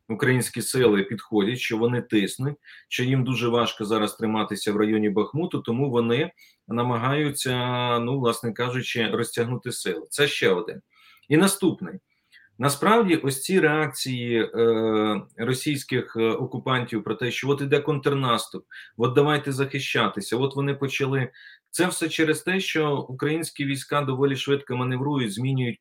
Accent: native